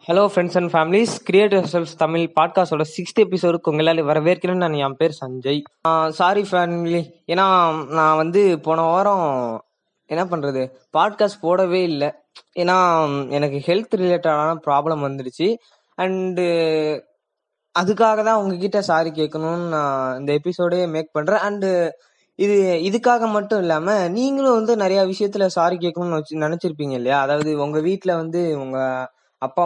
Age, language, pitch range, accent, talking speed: 20-39, Tamil, 160-195 Hz, native, 130 wpm